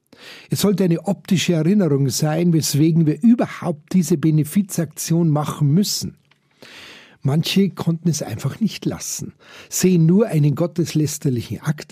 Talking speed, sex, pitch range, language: 120 wpm, male, 145-180 Hz, German